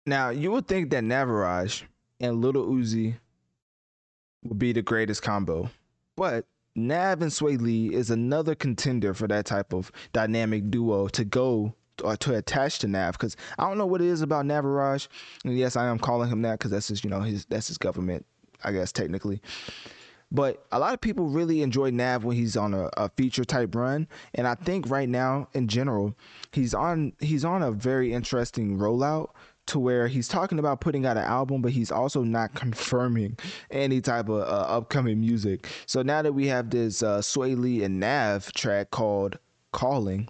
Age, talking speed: 20-39, 190 wpm